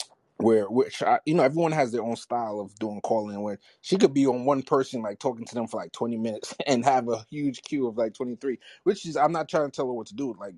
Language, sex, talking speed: English, male, 280 wpm